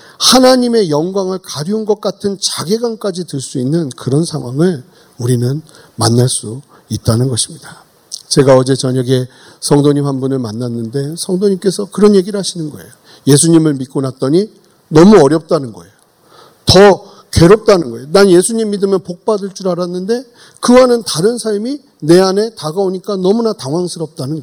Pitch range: 145-210 Hz